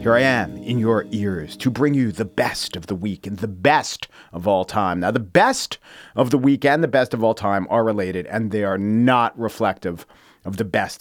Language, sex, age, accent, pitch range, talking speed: English, male, 40-59, American, 110-155 Hz, 230 wpm